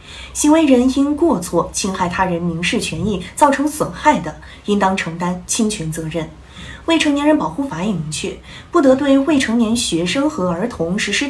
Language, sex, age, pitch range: Chinese, female, 20-39, 175-275 Hz